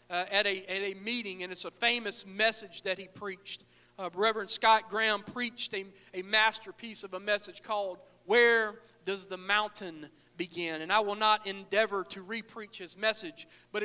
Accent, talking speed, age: American, 180 wpm, 40-59